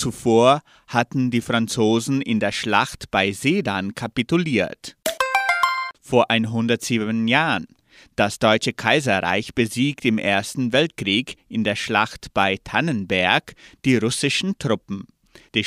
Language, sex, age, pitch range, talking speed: German, male, 30-49, 110-155 Hz, 110 wpm